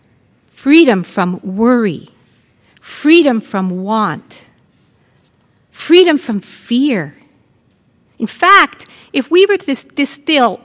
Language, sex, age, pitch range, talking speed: English, female, 50-69, 210-285 Hz, 90 wpm